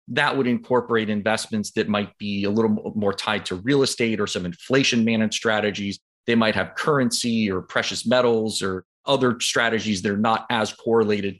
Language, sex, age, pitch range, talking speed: English, male, 30-49, 105-125 Hz, 180 wpm